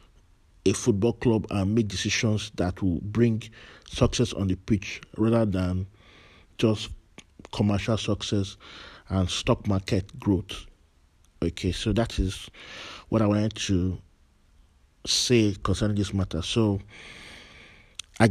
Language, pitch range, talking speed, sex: English, 90-110 Hz, 120 wpm, male